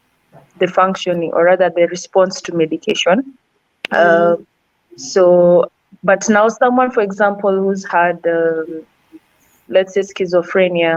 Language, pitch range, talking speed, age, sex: English, 170-195 Hz, 115 wpm, 20-39, female